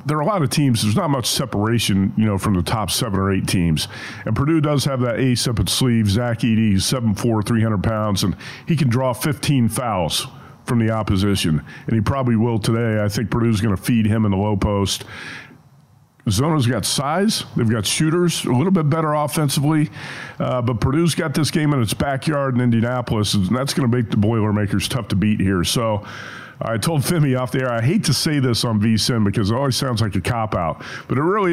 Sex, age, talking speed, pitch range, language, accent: male, 50-69, 220 wpm, 110-140 Hz, English, American